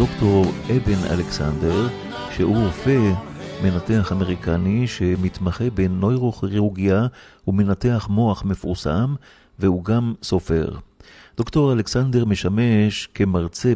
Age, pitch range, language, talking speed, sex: 50-69, 95-120 Hz, Hebrew, 85 wpm, male